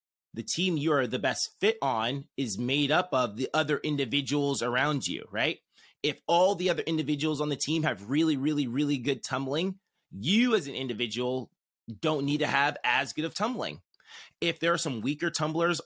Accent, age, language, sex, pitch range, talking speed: American, 30-49, English, male, 130-160 Hz, 190 wpm